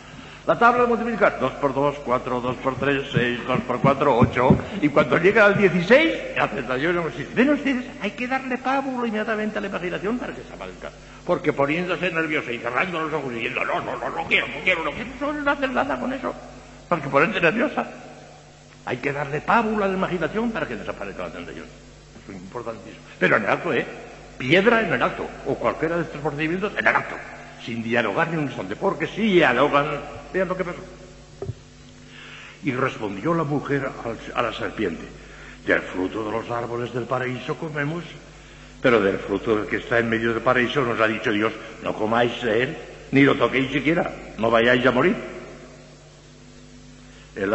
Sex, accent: male, Spanish